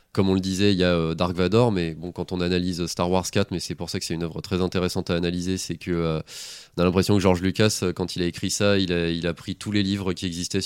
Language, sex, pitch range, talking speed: French, male, 90-110 Hz, 300 wpm